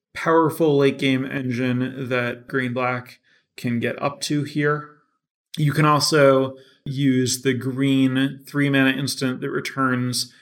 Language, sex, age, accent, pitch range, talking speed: English, male, 30-49, American, 125-150 Hz, 130 wpm